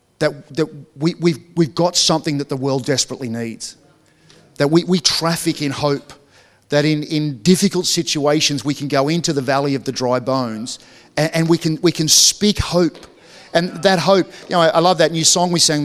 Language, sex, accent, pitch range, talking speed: English, male, Australian, 145-190 Hz, 200 wpm